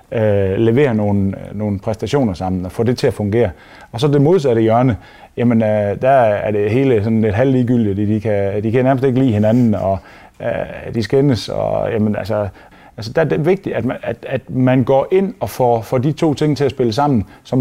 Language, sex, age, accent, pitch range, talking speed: Danish, male, 30-49, native, 105-135 Hz, 215 wpm